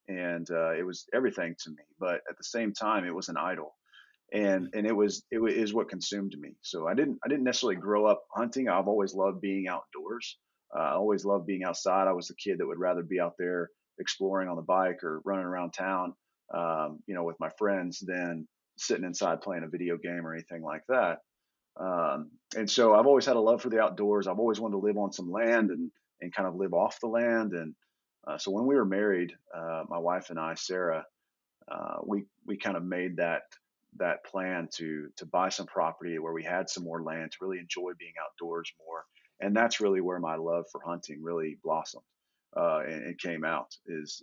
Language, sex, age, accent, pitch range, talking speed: English, male, 30-49, American, 85-100 Hz, 220 wpm